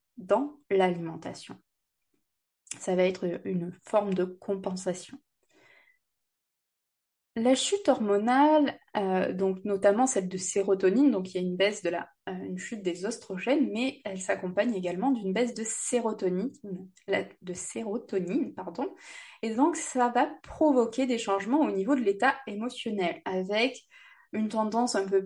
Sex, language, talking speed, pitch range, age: female, French, 140 wpm, 195-265 Hz, 20-39